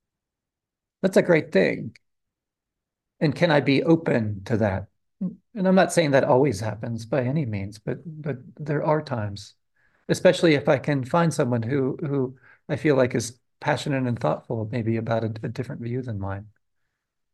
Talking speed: 170 wpm